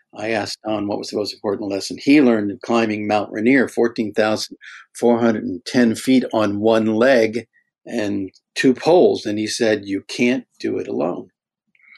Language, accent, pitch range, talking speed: English, American, 105-125 Hz, 155 wpm